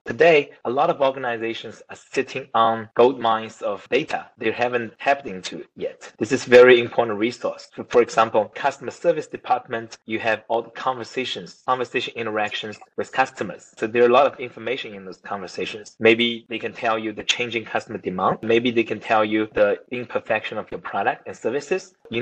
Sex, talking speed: male, 185 wpm